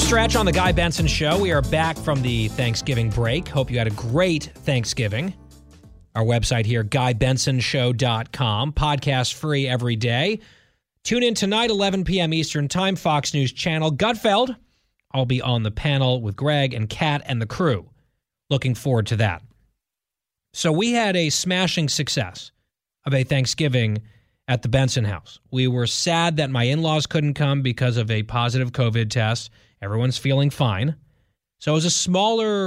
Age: 30-49